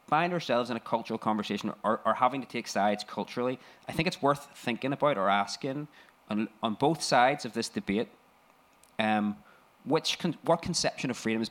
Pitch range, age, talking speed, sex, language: 110-140 Hz, 20-39, 175 wpm, male, English